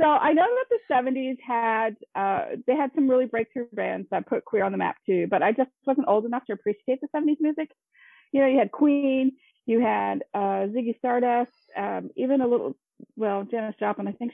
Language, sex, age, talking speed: English, female, 30-49, 215 wpm